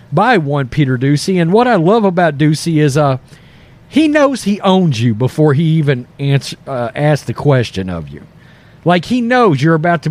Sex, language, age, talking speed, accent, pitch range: male, English, 40-59, 195 wpm, American, 140-185 Hz